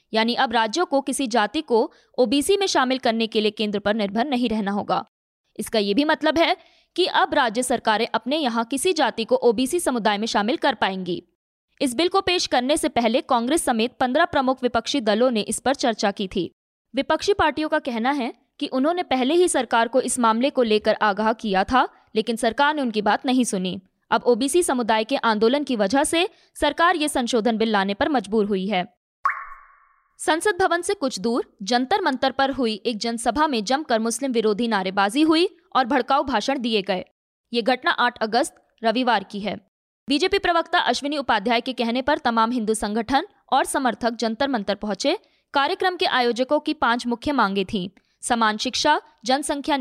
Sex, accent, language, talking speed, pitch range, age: female, native, Hindi, 185 wpm, 225-295 Hz, 20-39